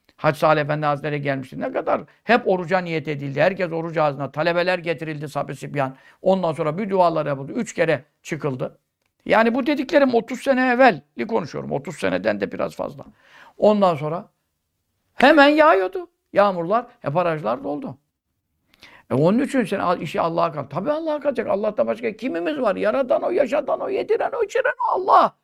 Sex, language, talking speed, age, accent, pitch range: male, Turkish, 155 wpm, 60-79, native, 155-230 Hz